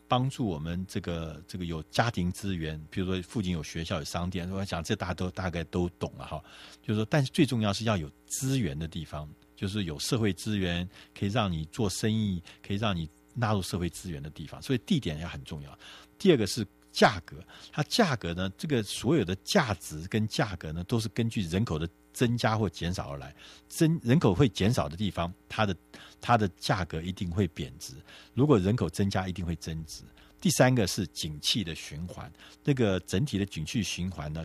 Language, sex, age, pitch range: Chinese, male, 50-69, 80-105 Hz